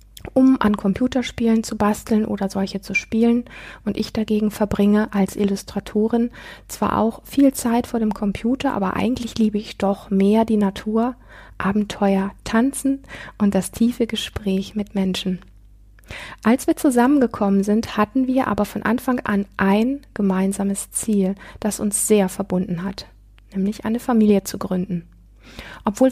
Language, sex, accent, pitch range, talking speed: German, female, German, 195-230 Hz, 140 wpm